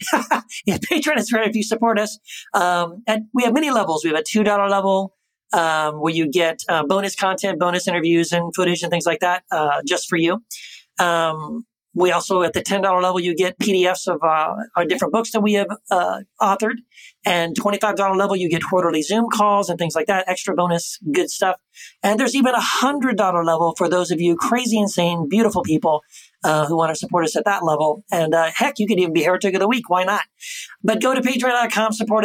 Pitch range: 170-215 Hz